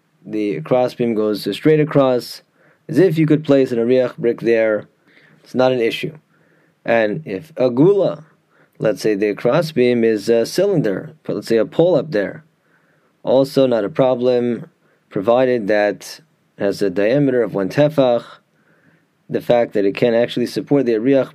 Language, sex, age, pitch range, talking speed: English, male, 20-39, 115-145 Hz, 165 wpm